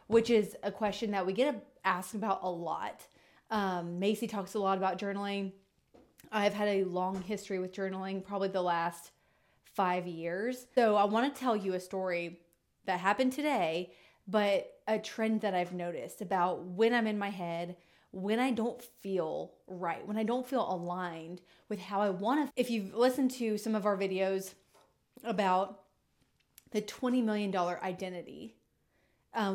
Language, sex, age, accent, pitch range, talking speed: English, female, 20-39, American, 185-220 Hz, 160 wpm